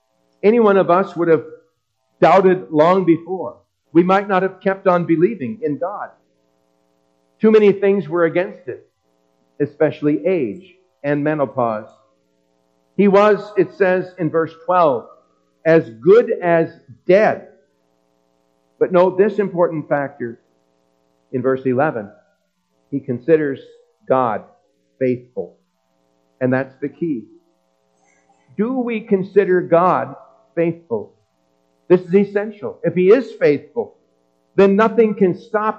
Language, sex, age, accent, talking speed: English, male, 50-69, American, 120 wpm